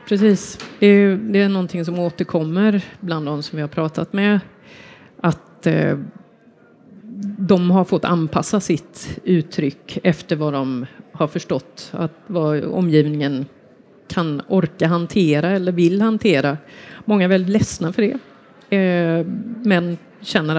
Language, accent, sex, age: Swedish, native, female, 30-49